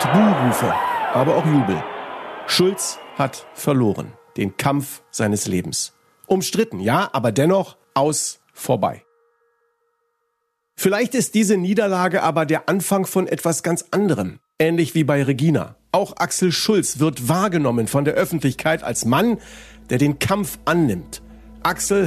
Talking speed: 130 wpm